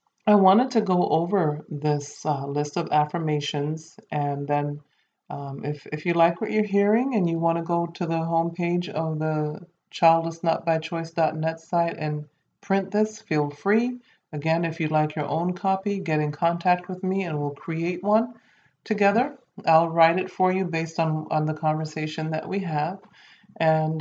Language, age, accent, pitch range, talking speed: English, 40-59, American, 150-180 Hz, 170 wpm